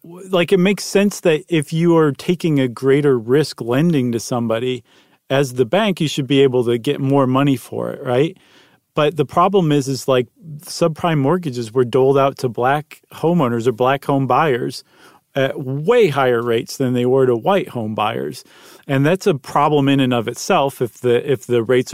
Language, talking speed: English, 195 wpm